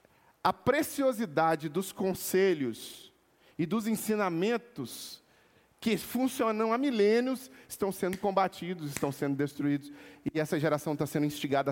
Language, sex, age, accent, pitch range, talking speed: Portuguese, male, 40-59, Brazilian, 150-215 Hz, 120 wpm